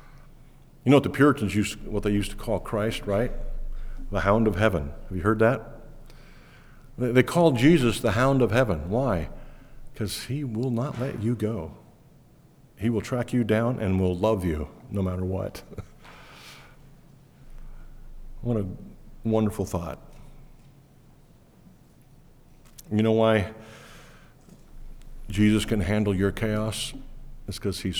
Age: 50-69